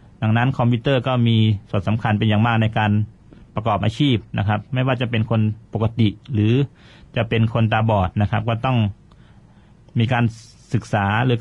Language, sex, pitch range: Thai, male, 105-125 Hz